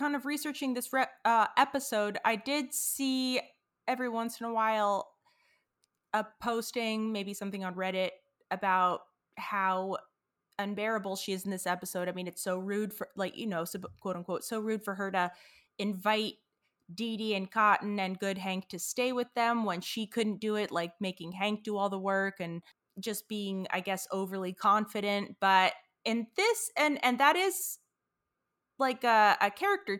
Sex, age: female, 20-39